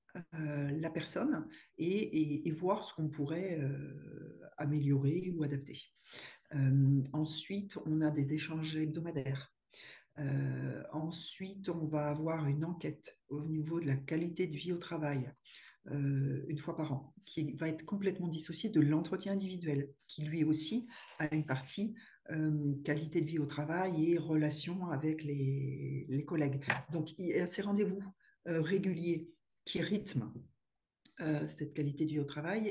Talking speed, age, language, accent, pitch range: 155 wpm, 50-69, French, French, 145-170 Hz